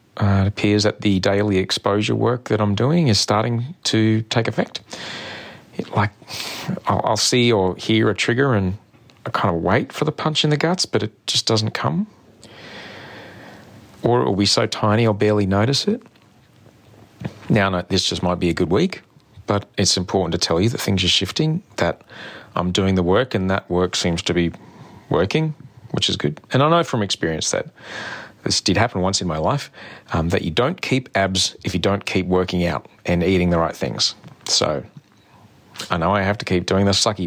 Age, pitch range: 30-49, 95-115 Hz